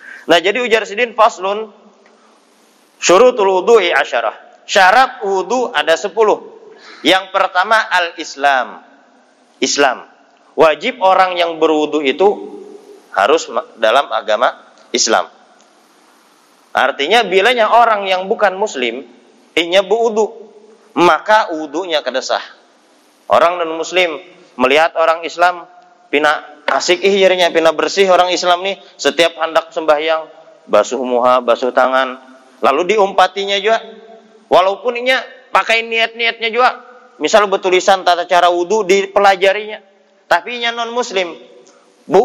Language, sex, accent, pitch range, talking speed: Indonesian, male, native, 170-225 Hz, 105 wpm